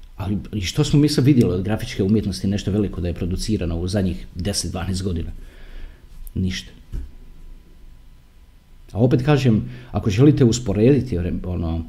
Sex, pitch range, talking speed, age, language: male, 75-125 Hz, 125 wpm, 40-59, Croatian